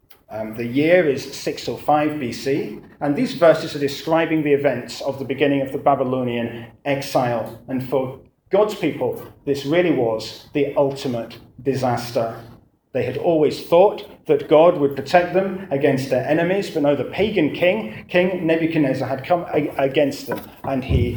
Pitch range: 125-160 Hz